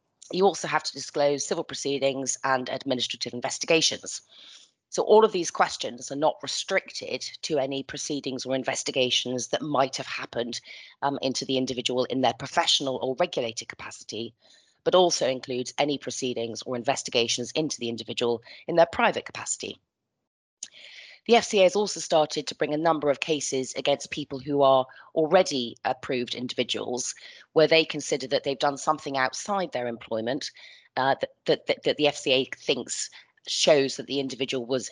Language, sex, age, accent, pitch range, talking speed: English, female, 30-49, British, 125-155 Hz, 155 wpm